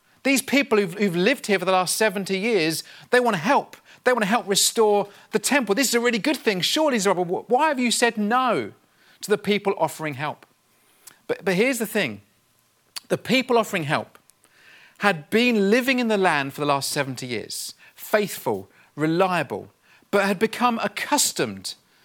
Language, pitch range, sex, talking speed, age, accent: English, 160-225 Hz, male, 180 wpm, 40-59, British